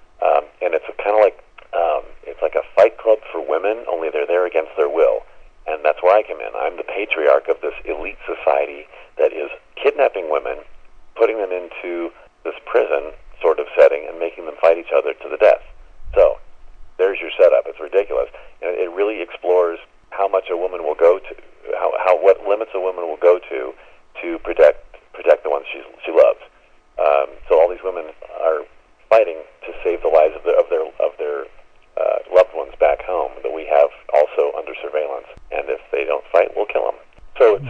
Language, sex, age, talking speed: English, male, 40-59, 200 wpm